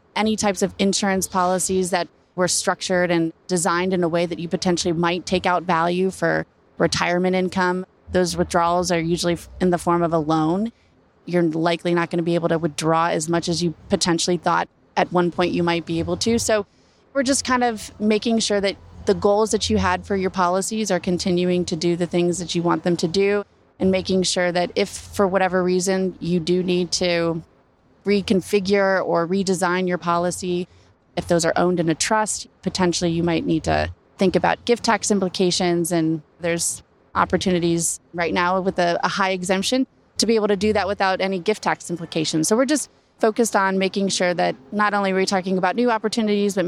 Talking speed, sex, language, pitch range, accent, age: 200 wpm, female, English, 170-195 Hz, American, 20-39